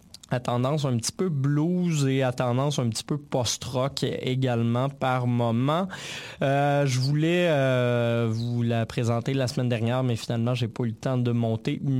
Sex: male